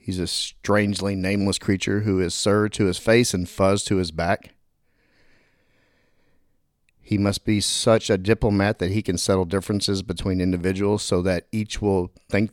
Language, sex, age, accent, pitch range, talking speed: English, male, 40-59, American, 95-115 Hz, 165 wpm